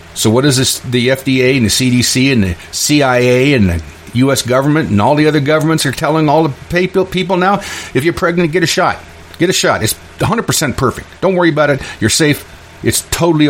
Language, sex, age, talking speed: English, male, 50-69, 210 wpm